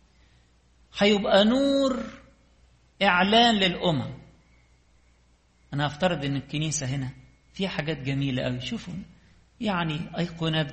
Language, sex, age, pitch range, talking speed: English, male, 50-69, 130-185 Hz, 90 wpm